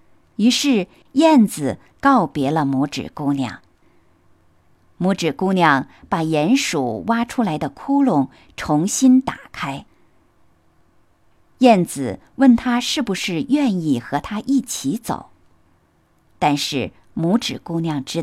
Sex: female